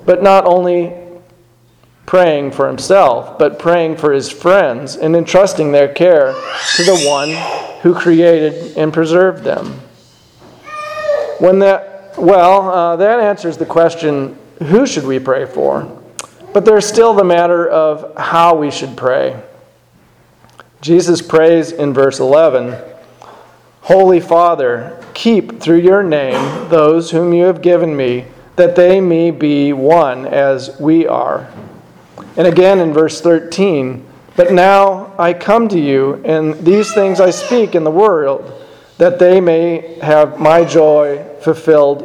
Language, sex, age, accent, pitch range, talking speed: English, male, 40-59, American, 150-185 Hz, 140 wpm